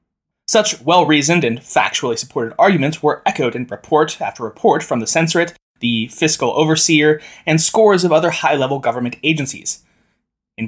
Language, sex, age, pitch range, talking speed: English, male, 20-39, 135-190 Hz, 145 wpm